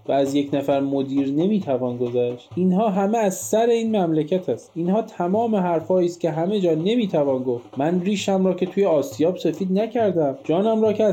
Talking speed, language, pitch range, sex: 185 wpm, Persian, 145-190 Hz, male